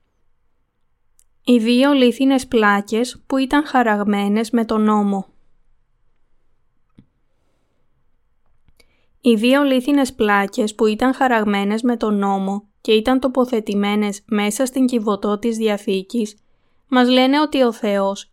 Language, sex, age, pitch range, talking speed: Greek, female, 20-39, 210-245 Hz, 110 wpm